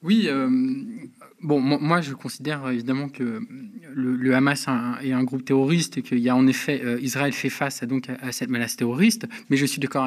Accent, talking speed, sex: French, 225 wpm, male